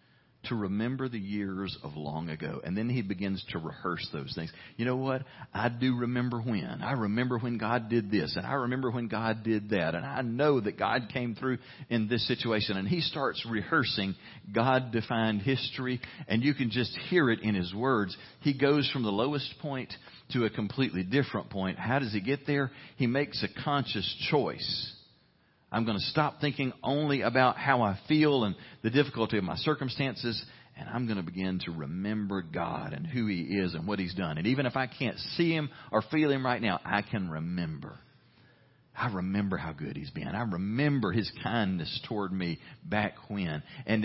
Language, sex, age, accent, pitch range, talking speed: English, male, 40-59, American, 100-130 Hz, 195 wpm